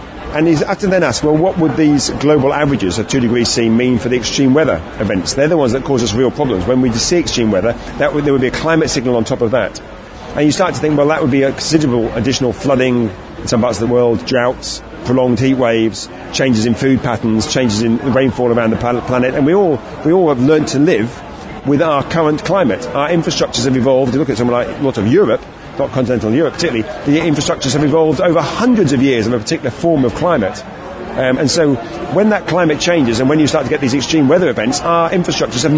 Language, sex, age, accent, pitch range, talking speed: English, male, 40-59, British, 125-160 Hz, 240 wpm